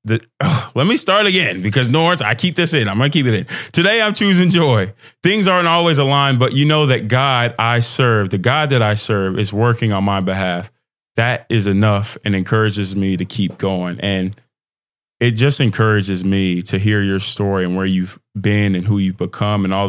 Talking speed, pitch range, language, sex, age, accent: 205 wpm, 95-125 Hz, English, male, 20-39, American